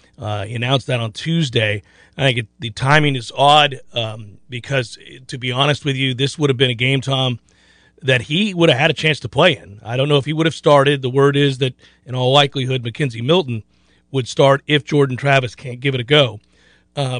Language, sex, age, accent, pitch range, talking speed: English, male, 40-59, American, 125-155 Hz, 225 wpm